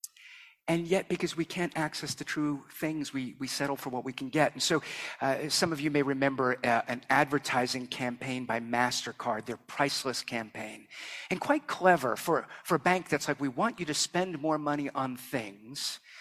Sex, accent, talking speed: male, American, 195 wpm